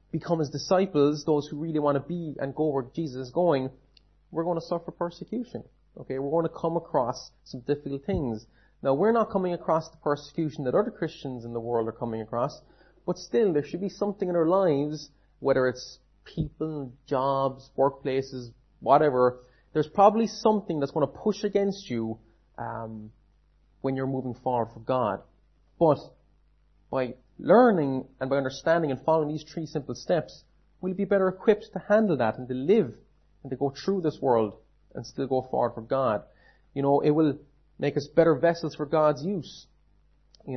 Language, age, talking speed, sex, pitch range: English, 30-49, 180 wpm, male, 130-165 Hz